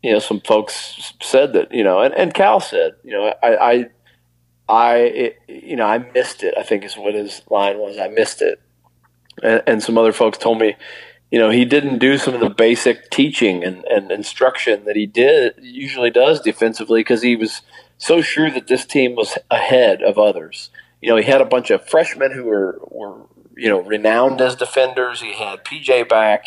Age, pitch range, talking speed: 40-59, 110-135 Hz, 205 wpm